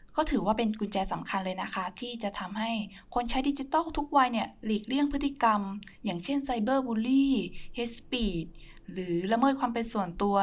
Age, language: 20-39, Thai